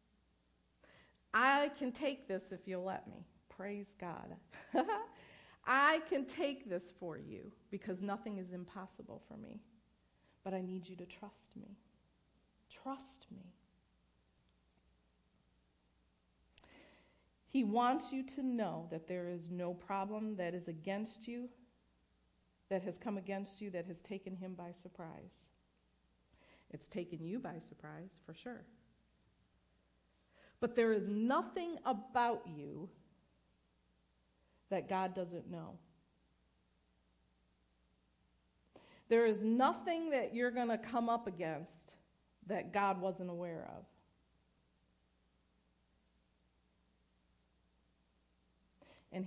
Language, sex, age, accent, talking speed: English, female, 50-69, American, 110 wpm